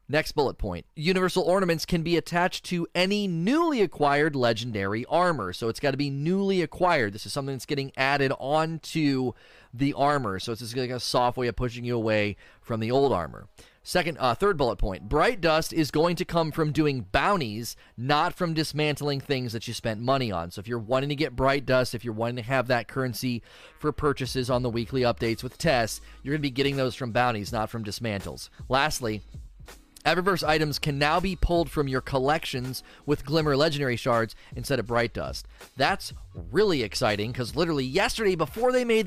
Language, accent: English, American